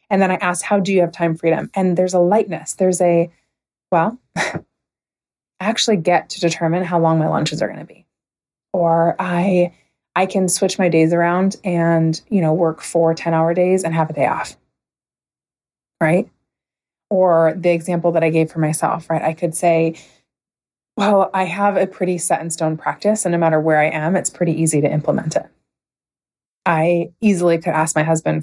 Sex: female